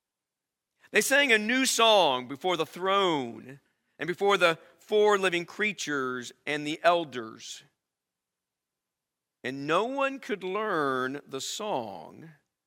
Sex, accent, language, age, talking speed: male, American, English, 50-69, 115 wpm